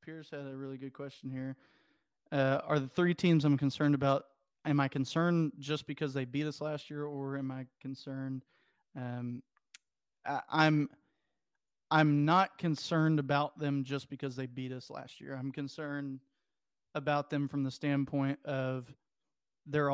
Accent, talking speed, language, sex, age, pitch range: American, 160 wpm, English, male, 30-49, 135-155 Hz